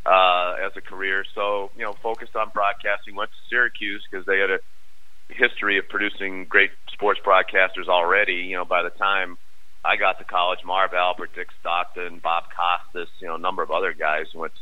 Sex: male